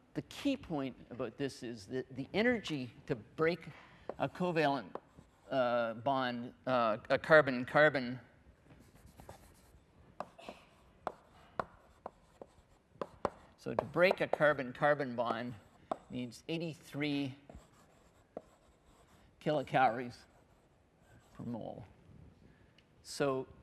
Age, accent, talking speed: 50-69, American, 70 wpm